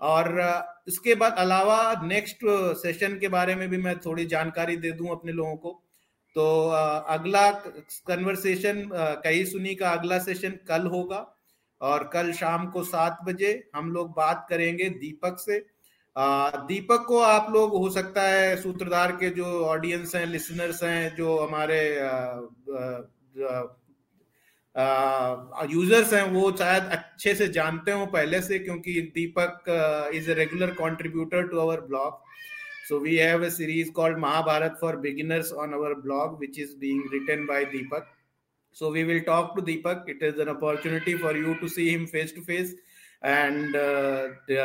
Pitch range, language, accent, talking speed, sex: 150-185 Hz, Hindi, native, 140 wpm, male